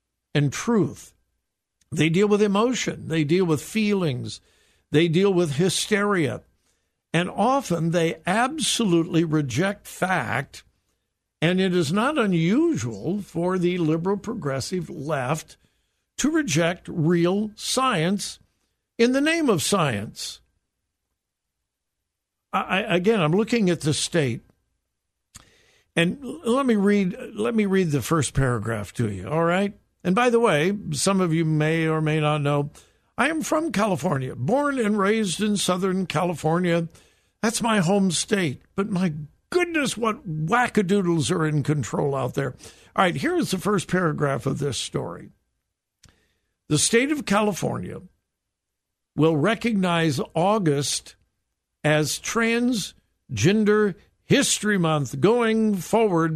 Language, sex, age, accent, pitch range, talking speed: English, male, 60-79, American, 150-210 Hz, 125 wpm